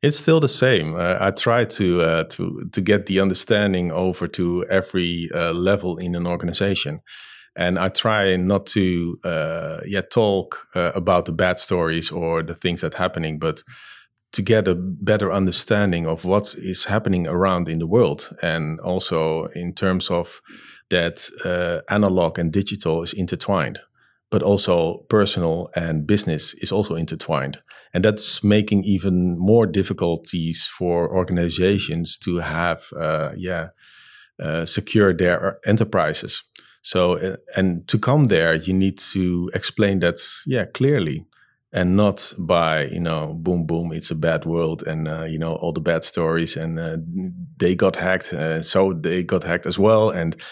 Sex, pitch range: male, 85-100 Hz